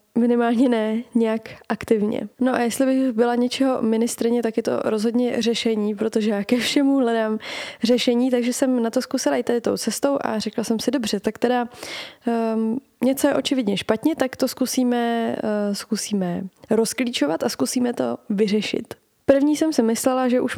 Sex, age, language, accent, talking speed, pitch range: female, 20-39, Czech, native, 170 wpm, 215-250 Hz